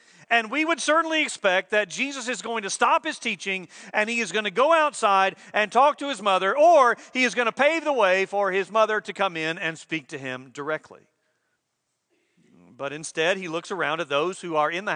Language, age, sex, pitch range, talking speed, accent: English, 40-59, male, 160-215 Hz, 220 wpm, American